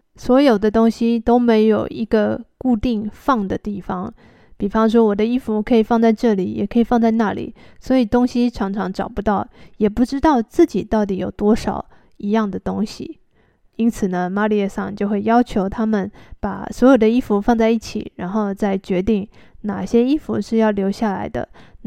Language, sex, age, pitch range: Chinese, female, 20-39, 205-245 Hz